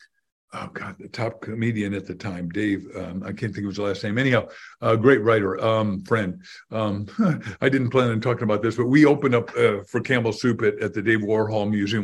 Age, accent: 50-69, American